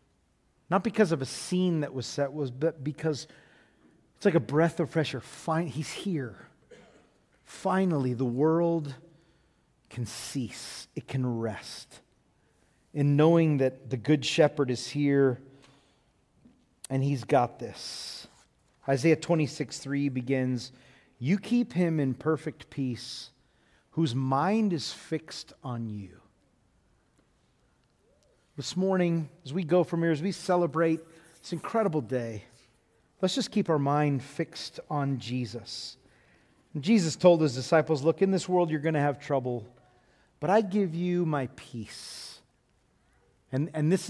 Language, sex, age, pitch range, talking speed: English, male, 40-59, 125-165 Hz, 135 wpm